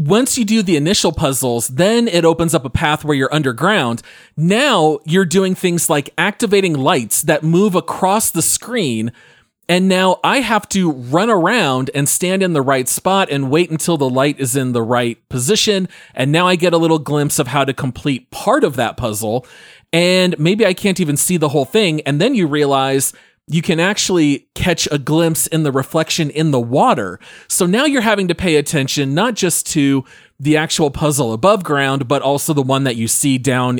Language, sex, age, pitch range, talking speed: English, male, 30-49, 135-185 Hz, 200 wpm